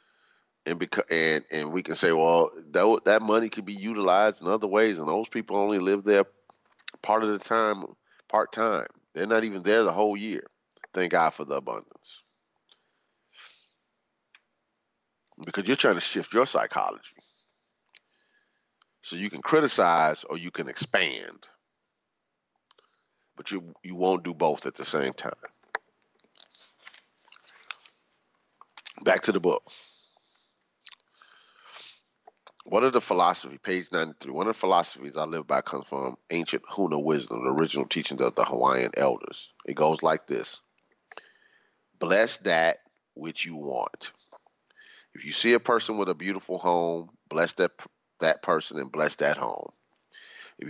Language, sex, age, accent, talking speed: English, male, 40-59, American, 145 wpm